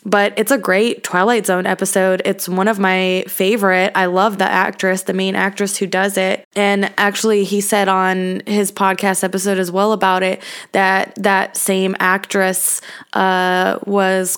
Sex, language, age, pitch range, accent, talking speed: female, English, 20-39, 185-210 Hz, American, 165 wpm